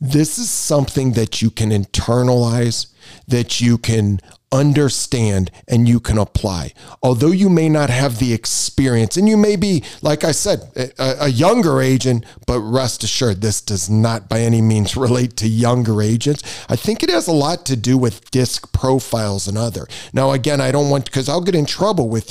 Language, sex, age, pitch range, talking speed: English, male, 40-59, 110-145 Hz, 190 wpm